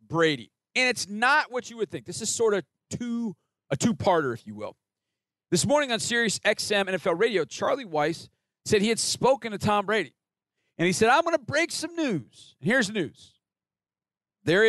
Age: 40-59